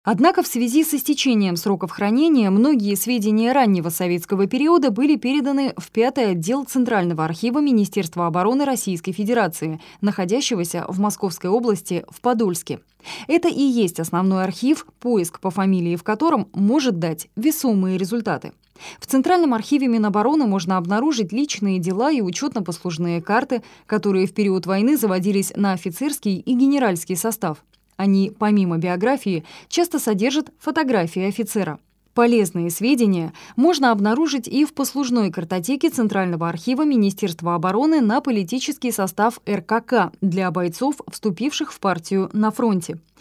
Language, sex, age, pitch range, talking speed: Russian, female, 20-39, 185-260 Hz, 130 wpm